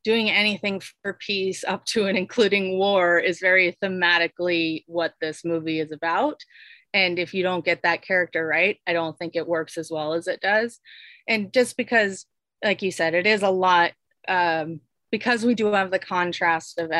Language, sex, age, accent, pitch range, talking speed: English, female, 30-49, American, 165-210 Hz, 185 wpm